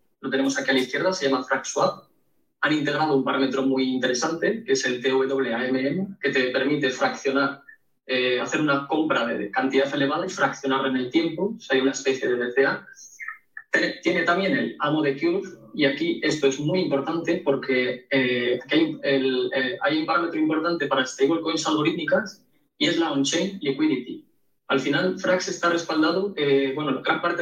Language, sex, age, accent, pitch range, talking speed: Spanish, male, 20-39, Spanish, 135-170 Hz, 180 wpm